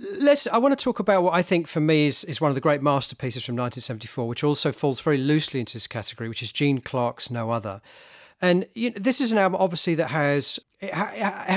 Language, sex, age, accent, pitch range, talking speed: English, male, 40-59, British, 125-165 Hz, 235 wpm